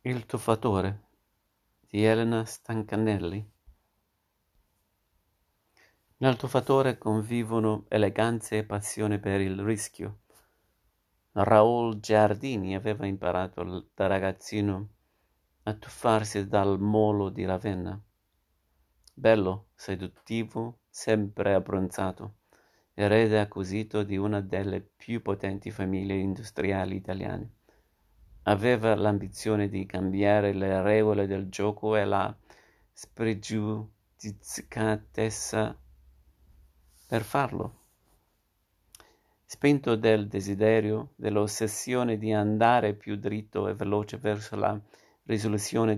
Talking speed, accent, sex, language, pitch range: 85 wpm, native, male, Italian, 95-110 Hz